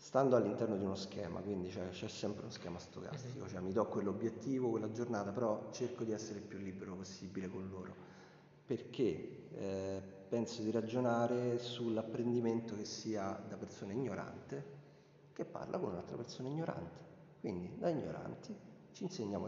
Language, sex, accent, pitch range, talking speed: Italian, male, native, 95-120 Hz, 155 wpm